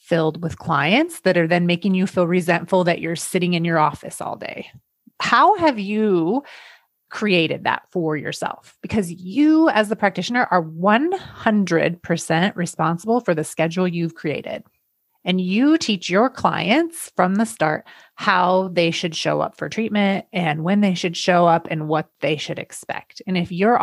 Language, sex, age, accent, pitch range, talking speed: English, female, 30-49, American, 170-225 Hz, 170 wpm